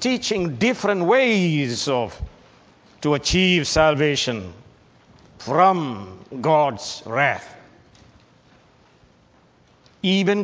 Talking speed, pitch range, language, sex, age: 65 wpm, 130-190 Hz, English, male, 60-79